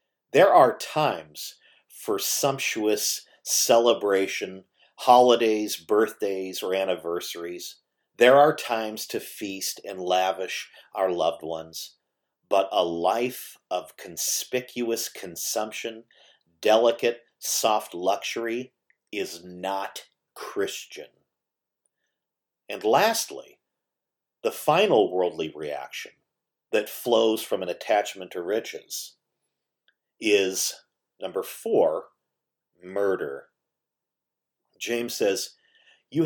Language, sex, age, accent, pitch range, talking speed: English, male, 50-69, American, 90-125 Hz, 85 wpm